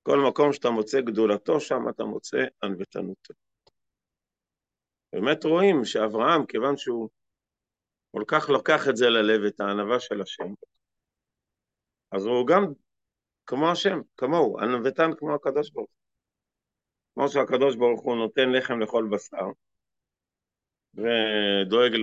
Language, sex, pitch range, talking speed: Hebrew, male, 110-140 Hz, 120 wpm